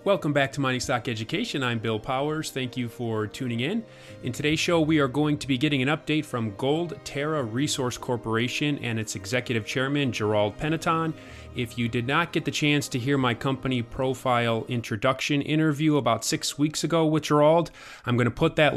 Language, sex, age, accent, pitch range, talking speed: English, male, 30-49, American, 120-150 Hz, 195 wpm